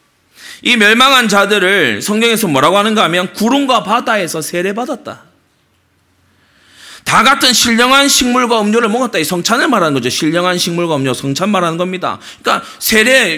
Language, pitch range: Korean, 175-240 Hz